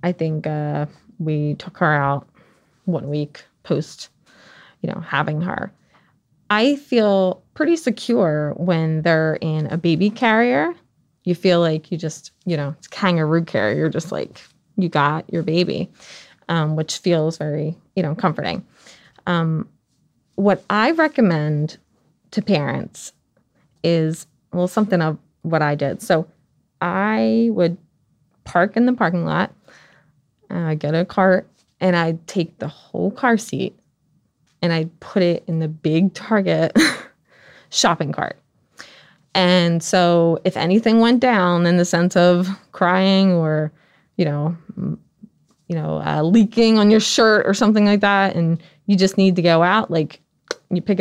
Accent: American